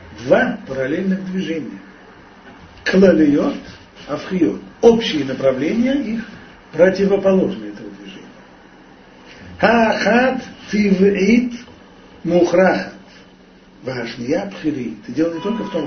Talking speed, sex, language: 80 wpm, male, Russian